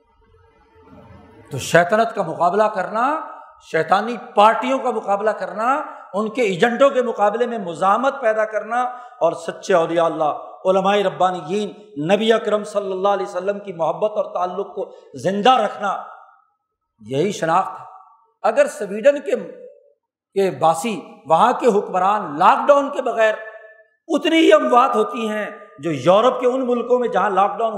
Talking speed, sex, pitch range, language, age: 140 wpm, male, 185-255 Hz, Urdu, 50-69